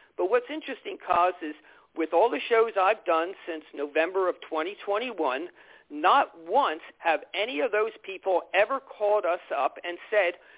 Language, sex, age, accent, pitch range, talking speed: English, male, 50-69, American, 170-250 Hz, 160 wpm